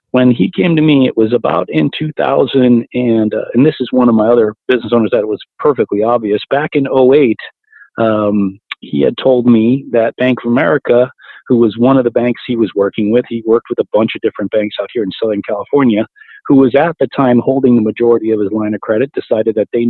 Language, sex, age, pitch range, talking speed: English, male, 40-59, 115-135 Hz, 230 wpm